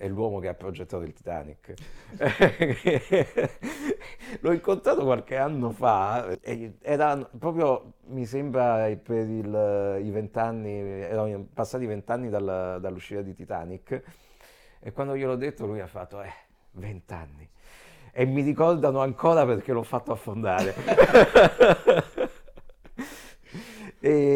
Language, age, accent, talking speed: Italian, 50-69, native, 110 wpm